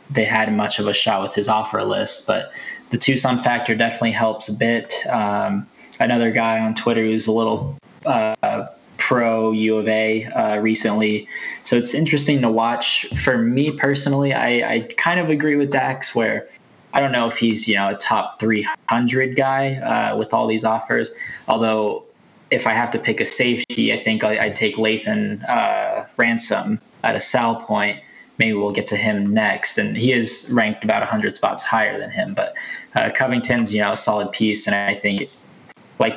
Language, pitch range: English, 105-120 Hz